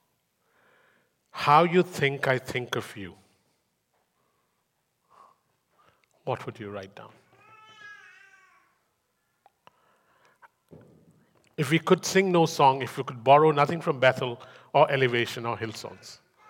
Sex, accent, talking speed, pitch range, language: male, Indian, 105 wpm, 125-175 Hz, English